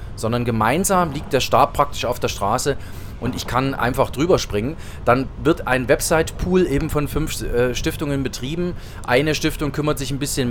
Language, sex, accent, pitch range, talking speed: German, male, German, 120-155 Hz, 170 wpm